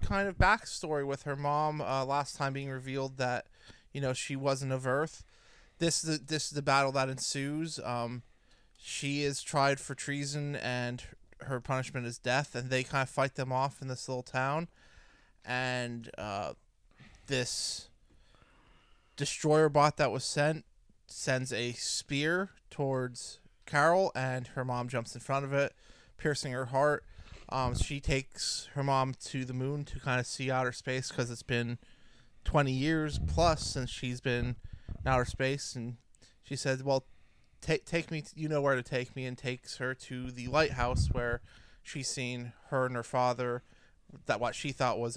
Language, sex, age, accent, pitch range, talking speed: English, male, 20-39, American, 120-140 Hz, 175 wpm